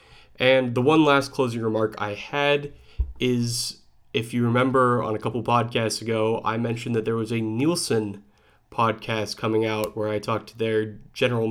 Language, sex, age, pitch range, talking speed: English, male, 20-39, 110-125 Hz, 170 wpm